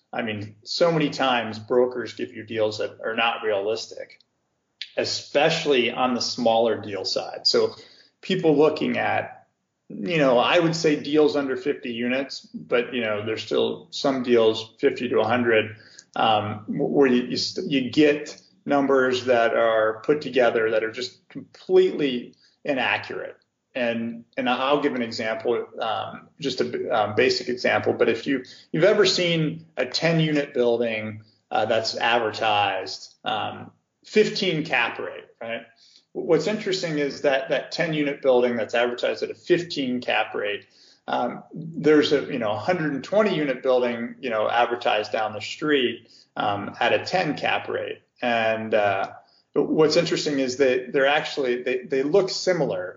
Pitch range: 120-175 Hz